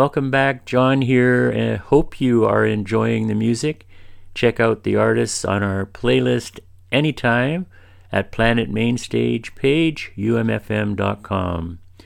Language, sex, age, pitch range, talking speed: English, male, 50-69, 90-115 Hz, 115 wpm